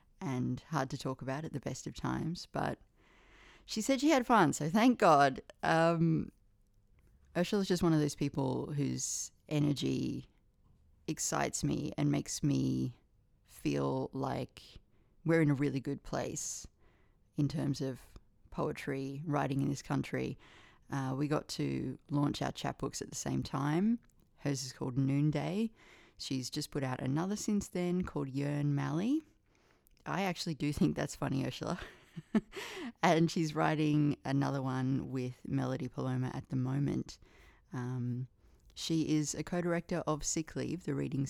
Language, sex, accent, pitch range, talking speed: English, female, Australian, 130-165 Hz, 150 wpm